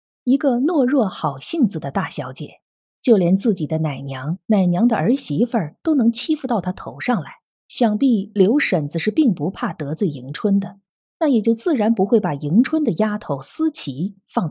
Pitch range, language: 165-235 Hz, Chinese